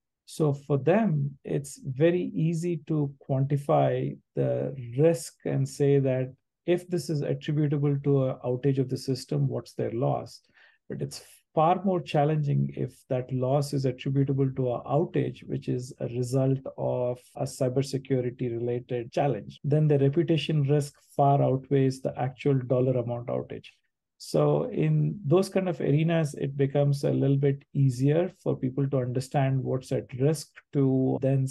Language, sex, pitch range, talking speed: English, male, 130-150 Hz, 150 wpm